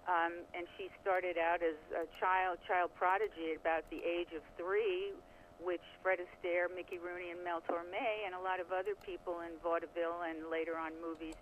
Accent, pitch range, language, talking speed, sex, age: American, 170-200 Hz, English, 190 wpm, female, 50-69